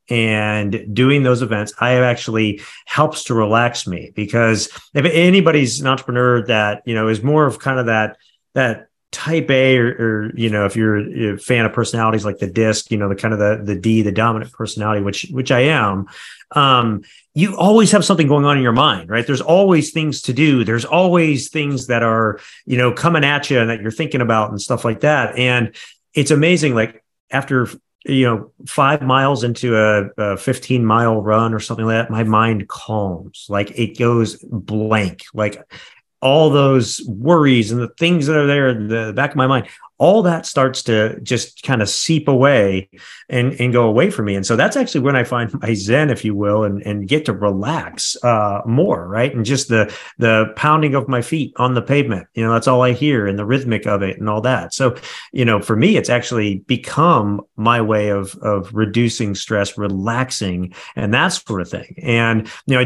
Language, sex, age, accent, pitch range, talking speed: English, male, 40-59, American, 105-130 Hz, 205 wpm